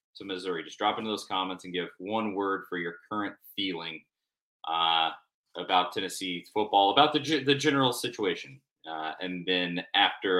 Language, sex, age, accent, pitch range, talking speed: English, male, 30-49, American, 100-145 Hz, 165 wpm